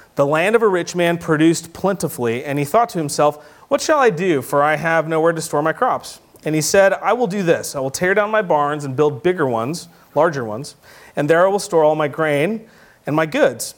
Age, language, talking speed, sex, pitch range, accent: 30-49, English, 240 wpm, male, 140-180 Hz, American